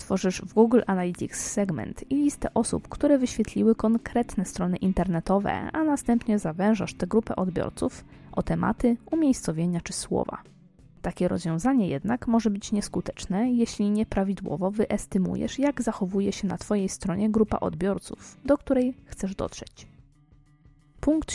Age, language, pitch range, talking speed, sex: 20-39, Polish, 180-240 Hz, 130 wpm, female